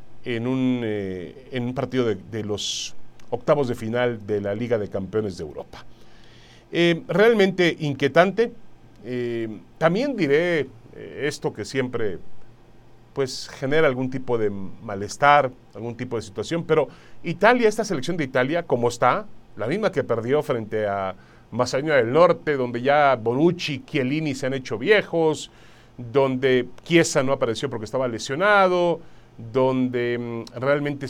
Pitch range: 120-175 Hz